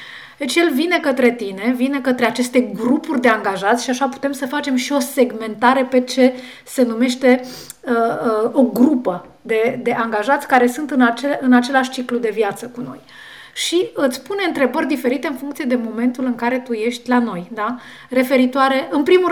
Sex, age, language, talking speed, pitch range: female, 30-49, Romanian, 175 wpm, 235-270 Hz